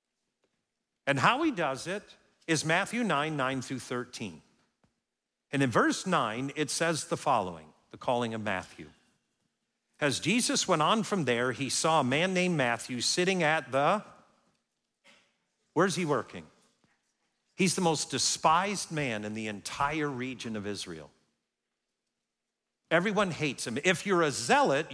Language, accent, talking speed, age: English, American, 140 wpm, 50-69